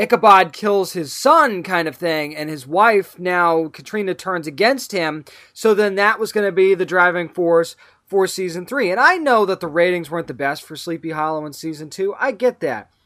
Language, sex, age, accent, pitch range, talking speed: English, male, 20-39, American, 175-235 Hz, 210 wpm